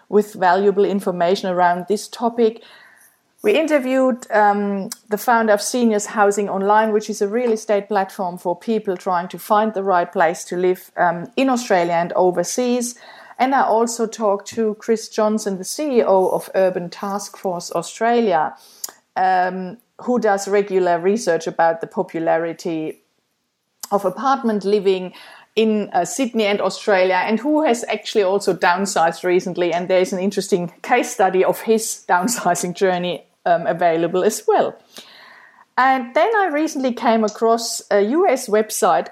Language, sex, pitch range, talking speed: English, female, 185-225 Hz, 145 wpm